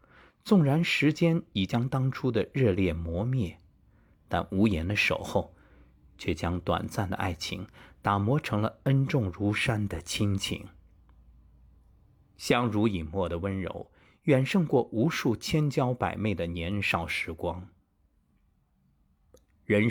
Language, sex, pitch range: Chinese, male, 85-110 Hz